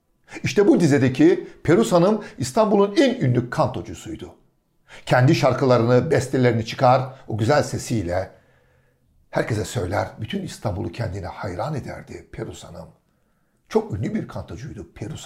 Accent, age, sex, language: native, 60-79, male, Turkish